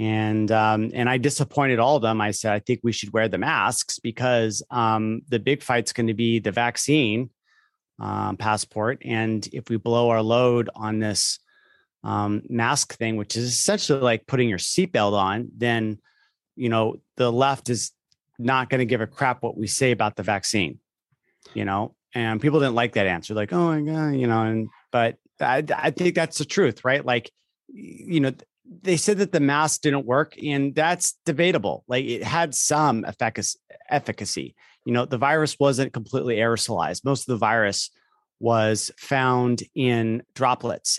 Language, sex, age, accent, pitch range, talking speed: English, male, 30-49, American, 110-140 Hz, 180 wpm